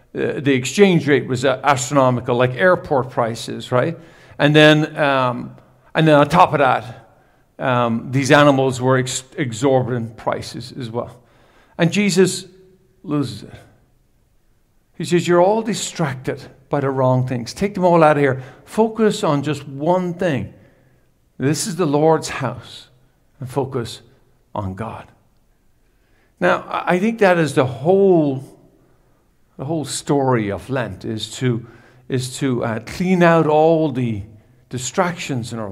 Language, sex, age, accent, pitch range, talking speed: English, male, 50-69, American, 125-170 Hz, 140 wpm